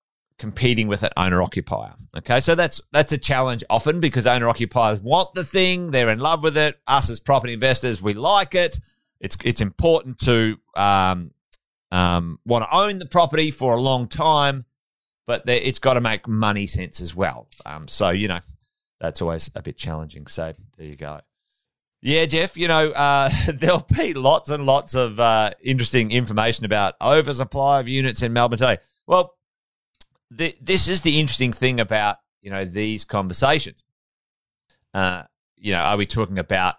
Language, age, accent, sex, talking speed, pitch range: English, 30-49, Australian, male, 175 wpm, 95-130 Hz